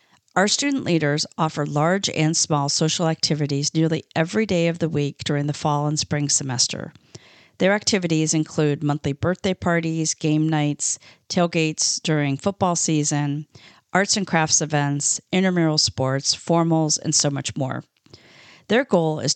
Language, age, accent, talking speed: English, 40-59, American, 145 wpm